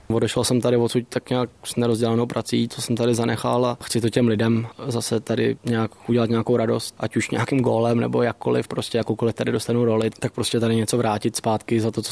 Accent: native